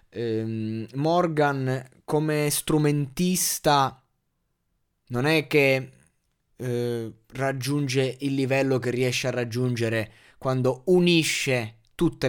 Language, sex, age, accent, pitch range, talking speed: Italian, male, 20-39, native, 115-145 Hz, 85 wpm